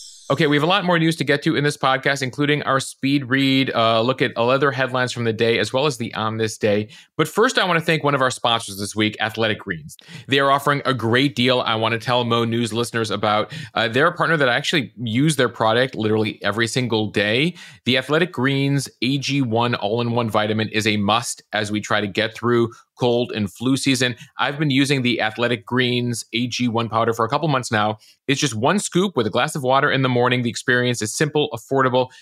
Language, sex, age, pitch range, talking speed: English, male, 30-49, 115-135 Hz, 230 wpm